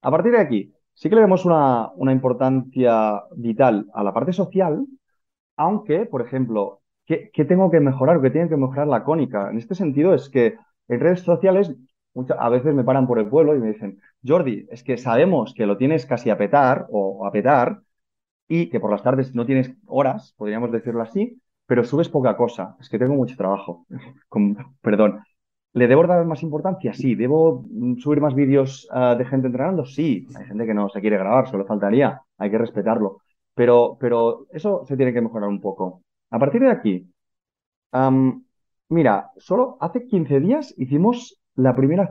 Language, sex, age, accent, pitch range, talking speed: Spanish, male, 30-49, Spanish, 110-150 Hz, 185 wpm